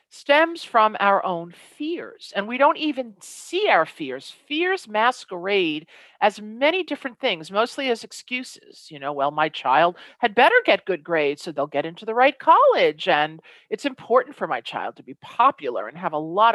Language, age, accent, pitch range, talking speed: English, 50-69, American, 185-280 Hz, 185 wpm